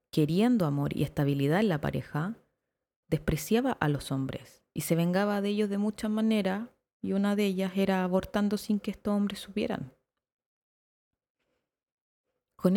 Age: 30-49